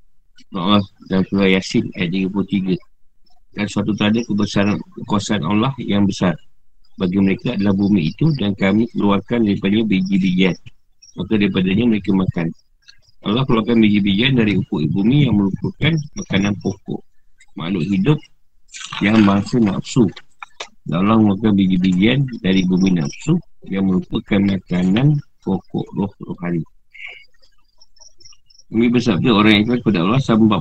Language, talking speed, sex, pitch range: Malay, 125 wpm, male, 95-115 Hz